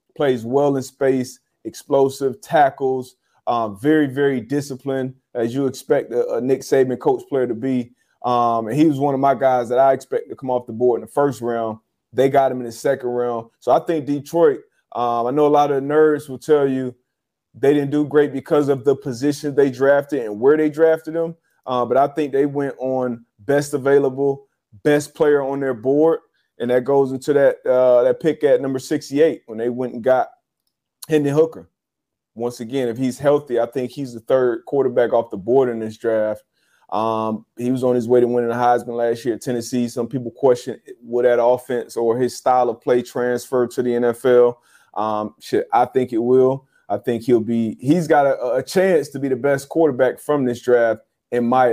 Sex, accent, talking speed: male, American, 210 wpm